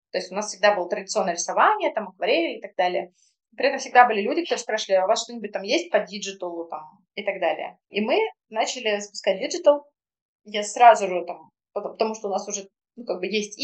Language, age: Russian, 20-39